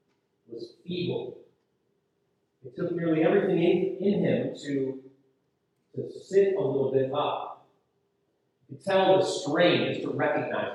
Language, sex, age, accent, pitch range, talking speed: English, male, 40-59, American, 170-240 Hz, 135 wpm